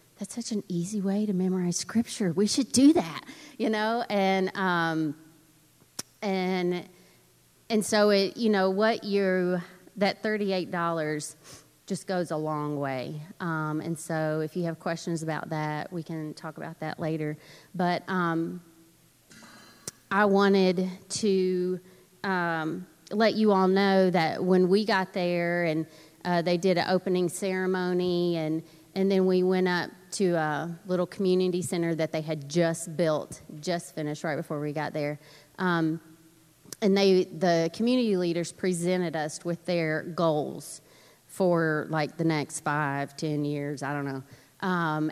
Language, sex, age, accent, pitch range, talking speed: English, female, 30-49, American, 155-190 Hz, 155 wpm